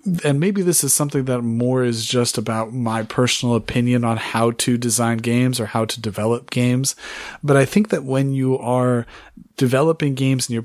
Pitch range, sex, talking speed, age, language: 115-135 Hz, male, 190 wpm, 40-59, English